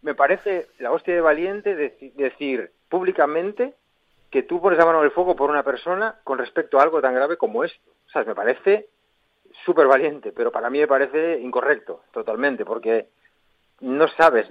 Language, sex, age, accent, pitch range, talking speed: Spanish, male, 30-49, Spanish, 130-200 Hz, 180 wpm